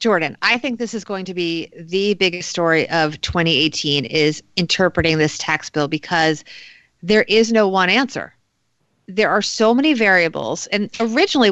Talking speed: 160 wpm